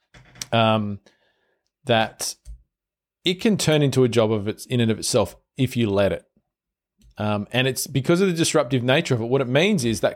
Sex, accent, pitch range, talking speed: male, Australian, 115-150 Hz, 195 wpm